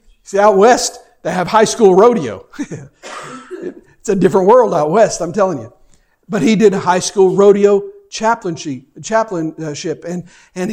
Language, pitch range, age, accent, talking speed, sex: English, 160-215 Hz, 50-69, American, 160 wpm, male